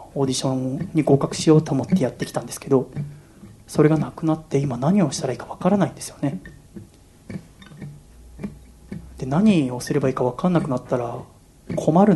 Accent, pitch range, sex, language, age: native, 125-160 Hz, male, Japanese, 30-49